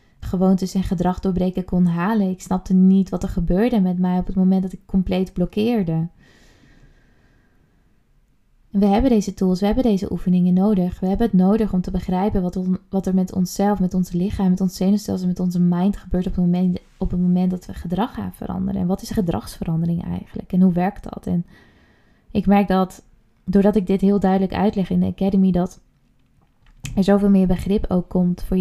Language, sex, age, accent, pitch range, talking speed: Dutch, female, 20-39, Dutch, 175-195 Hz, 200 wpm